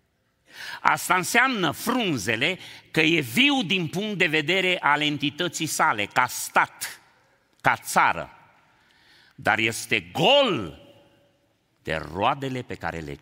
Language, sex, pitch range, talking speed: Romanian, male, 95-140 Hz, 115 wpm